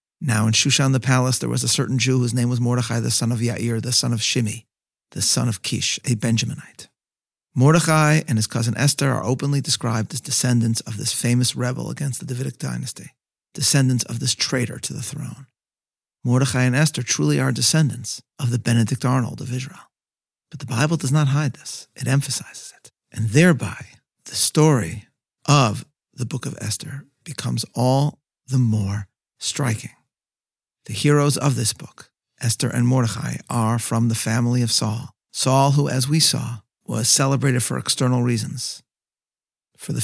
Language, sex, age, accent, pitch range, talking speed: English, male, 50-69, American, 120-140 Hz, 170 wpm